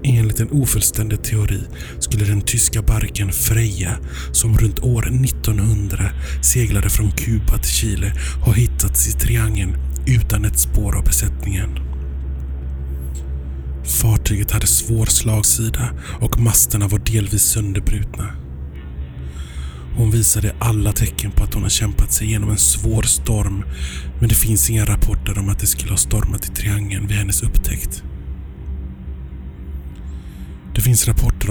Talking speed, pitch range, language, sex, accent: 130 wpm, 75-110 Hz, Swedish, male, native